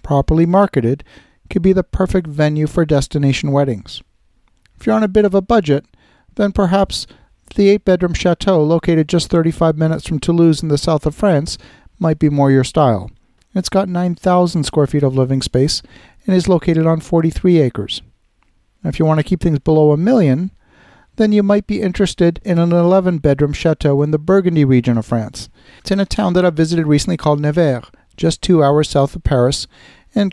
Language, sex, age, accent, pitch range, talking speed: English, male, 50-69, American, 145-180 Hz, 185 wpm